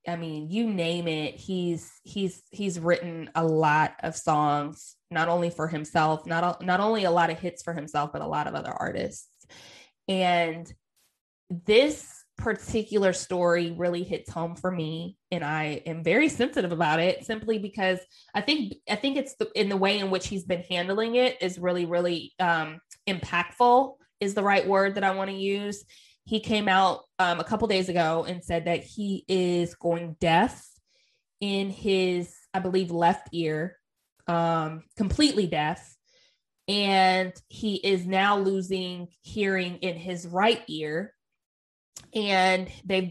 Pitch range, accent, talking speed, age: 170-200 Hz, American, 160 wpm, 20-39